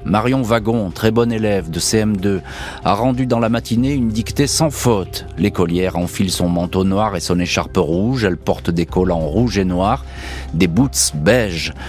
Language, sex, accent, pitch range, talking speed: French, male, French, 90-120 Hz, 175 wpm